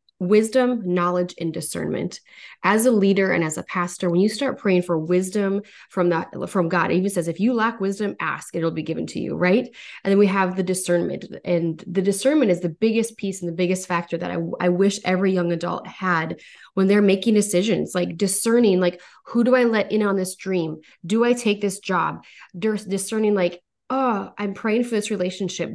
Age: 20-39